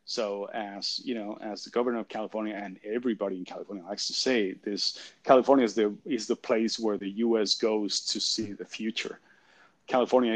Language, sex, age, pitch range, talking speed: English, male, 30-49, 105-140 Hz, 185 wpm